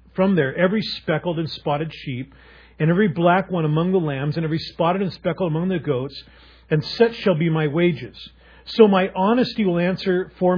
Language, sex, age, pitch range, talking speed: English, male, 40-59, 140-180 Hz, 195 wpm